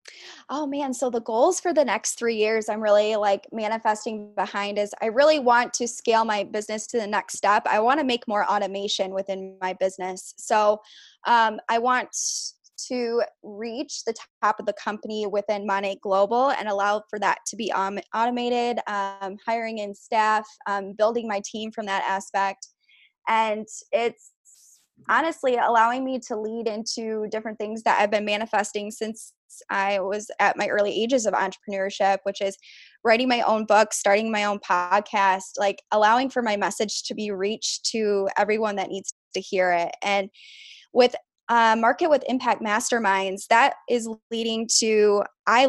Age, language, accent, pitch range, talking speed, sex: 10-29, English, American, 200-230 Hz, 170 wpm, female